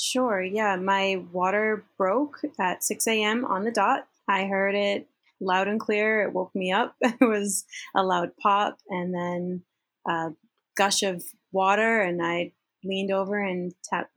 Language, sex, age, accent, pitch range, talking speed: English, female, 20-39, American, 185-230 Hz, 155 wpm